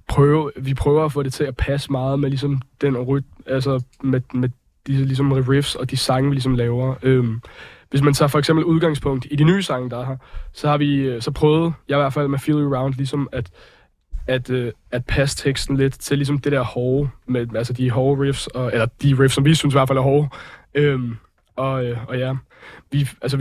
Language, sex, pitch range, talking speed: Danish, male, 130-140 Hz, 225 wpm